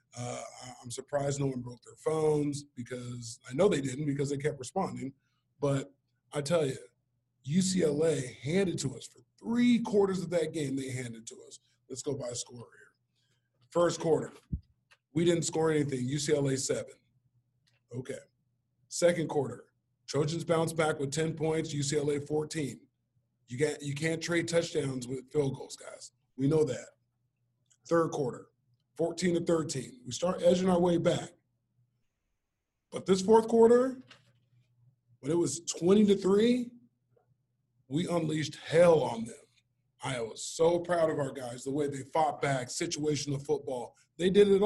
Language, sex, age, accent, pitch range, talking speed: English, male, 20-39, American, 125-160 Hz, 155 wpm